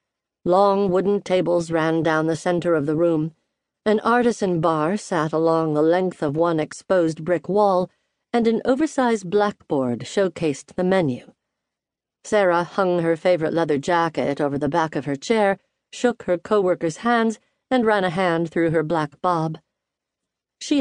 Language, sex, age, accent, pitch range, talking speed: English, female, 50-69, American, 160-205 Hz, 155 wpm